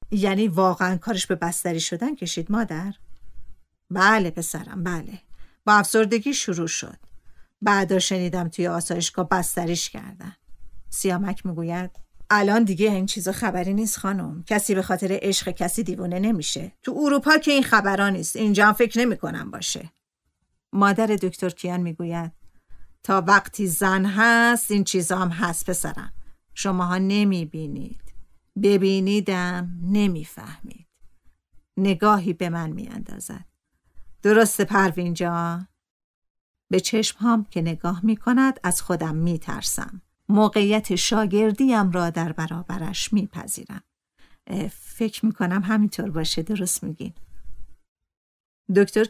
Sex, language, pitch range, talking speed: female, Persian, 175-215 Hz, 115 wpm